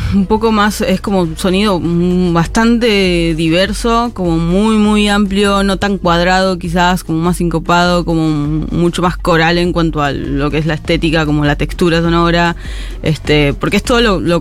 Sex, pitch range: female, 155-180 Hz